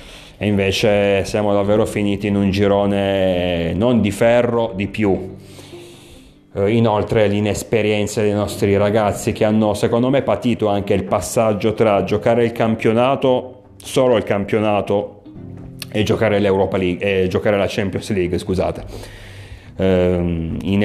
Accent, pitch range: native, 95-110 Hz